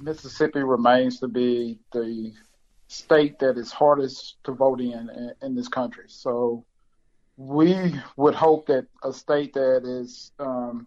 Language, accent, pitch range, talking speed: English, American, 130-150 Hz, 145 wpm